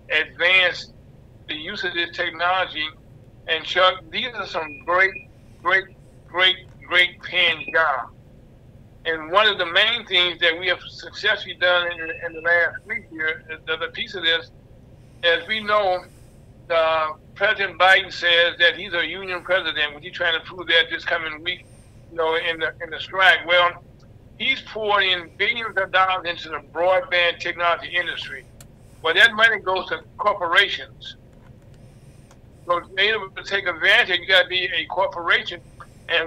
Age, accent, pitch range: 60-79, American, 135-180 Hz